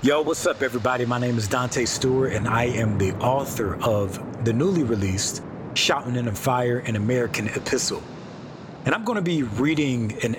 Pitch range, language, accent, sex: 110-130 Hz, English, American, male